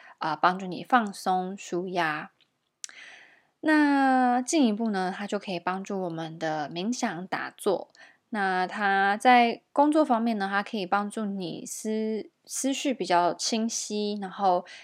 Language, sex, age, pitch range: Chinese, female, 20-39, 185-230 Hz